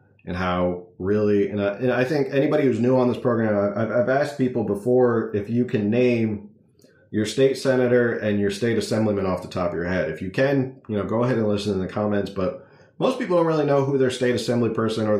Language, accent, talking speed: English, American, 235 wpm